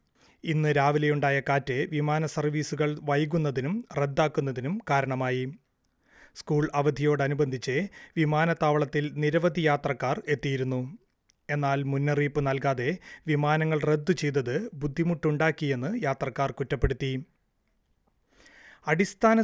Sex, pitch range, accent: male, 140-165 Hz, native